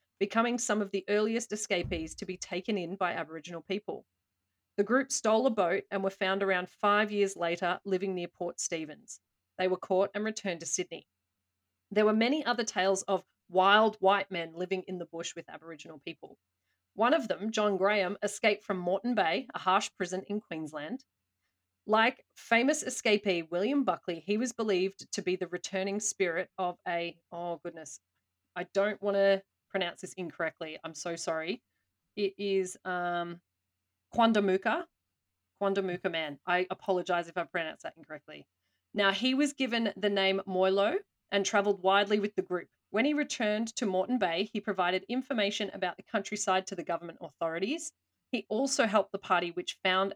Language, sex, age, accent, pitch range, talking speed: English, female, 30-49, Australian, 175-210 Hz, 170 wpm